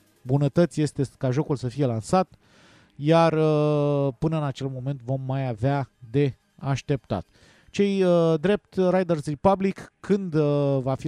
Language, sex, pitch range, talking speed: Romanian, male, 125-160 Hz, 130 wpm